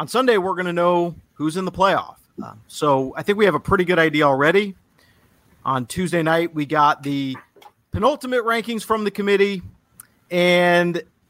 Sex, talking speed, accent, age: male, 170 wpm, American, 30-49